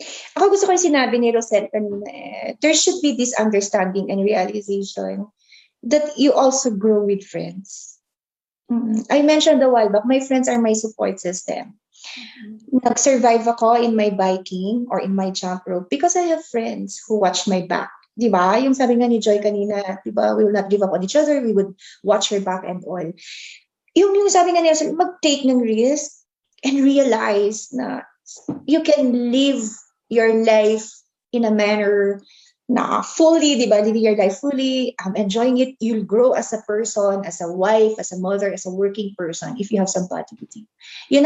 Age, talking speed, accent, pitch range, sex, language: 20-39, 175 wpm, native, 200-265 Hz, female, Filipino